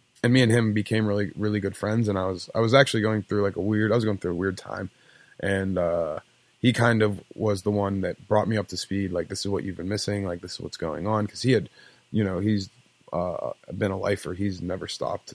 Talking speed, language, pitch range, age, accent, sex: 260 wpm, English, 95-110 Hz, 20-39, American, male